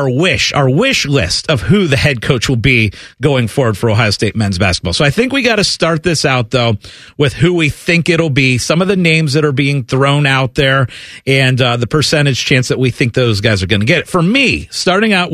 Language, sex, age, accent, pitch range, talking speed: English, male, 40-59, American, 130-165 Hz, 250 wpm